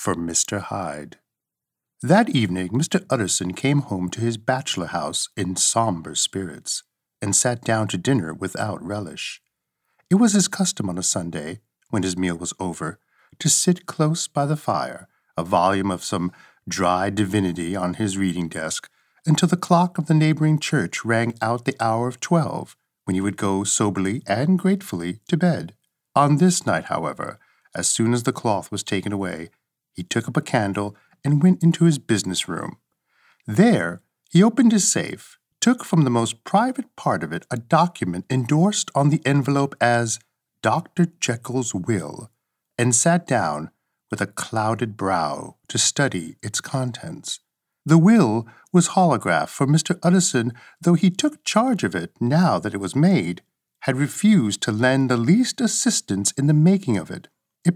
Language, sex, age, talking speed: English, male, 50-69, 165 wpm